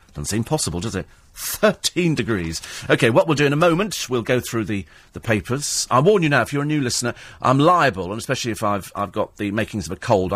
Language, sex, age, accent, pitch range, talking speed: English, male, 40-59, British, 100-135 Hz, 245 wpm